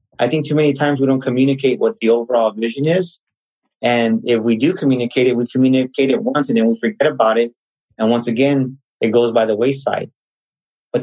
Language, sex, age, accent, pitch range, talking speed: English, male, 30-49, American, 115-145 Hz, 205 wpm